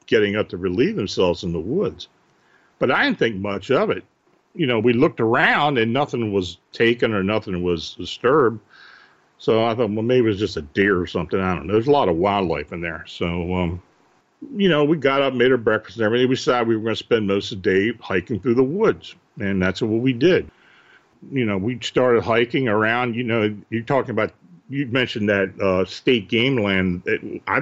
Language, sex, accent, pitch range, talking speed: English, male, American, 95-130 Hz, 220 wpm